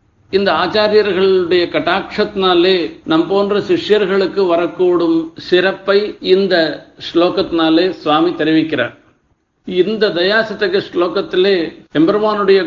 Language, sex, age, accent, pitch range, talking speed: Tamil, male, 50-69, native, 175-210 Hz, 75 wpm